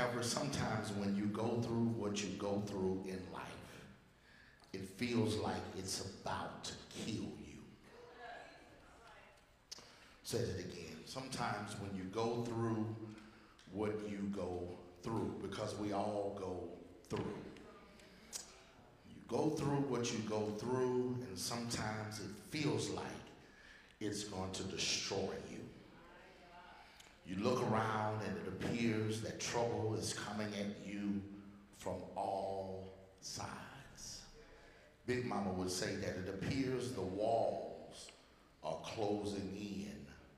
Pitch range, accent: 95-115 Hz, American